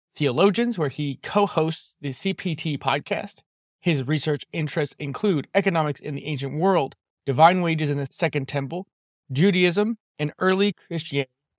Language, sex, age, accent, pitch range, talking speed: English, male, 20-39, American, 145-175 Hz, 135 wpm